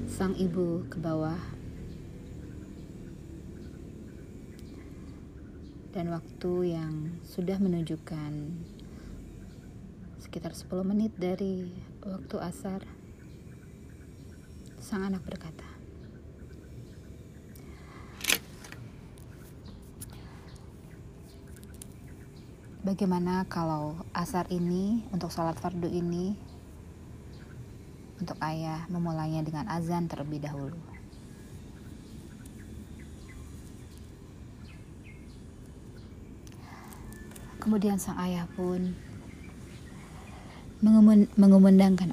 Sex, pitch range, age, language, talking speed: female, 155-195 Hz, 30-49, Indonesian, 55 wpm